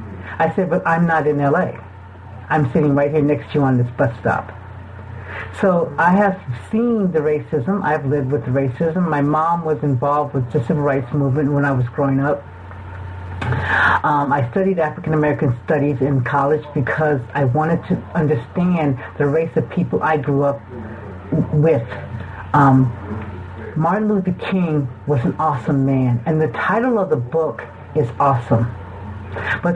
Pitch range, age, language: 115-165 Hz, 50-69, English